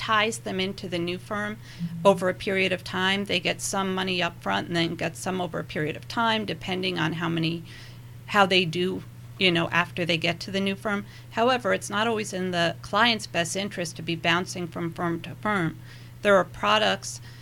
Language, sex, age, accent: English, female, 40-59, American